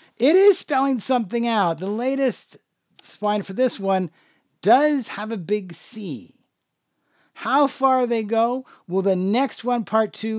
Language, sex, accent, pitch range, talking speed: English, male, American, 165-240 Hz, 150 wpm